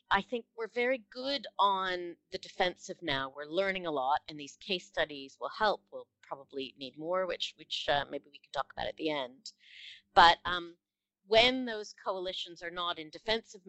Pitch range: 150-195 Hz